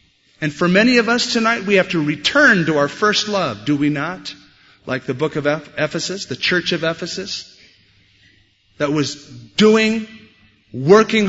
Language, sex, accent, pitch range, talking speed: English, male, American, 130-190 Hz, 160 wpm